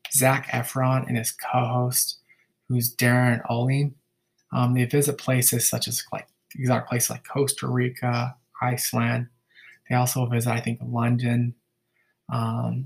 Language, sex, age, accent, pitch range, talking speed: English, male, 20-39, American, 120-130 Hz, 125 wpm